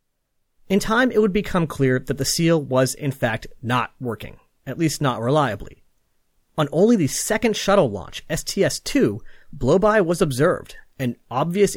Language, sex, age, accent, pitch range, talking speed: English, male, 30-49, American, 120-185 Hz, 155 wpm